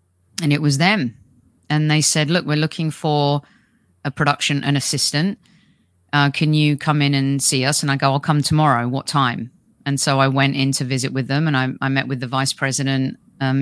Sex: female